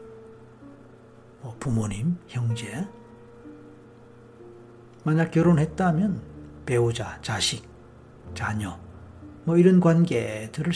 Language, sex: Korean, male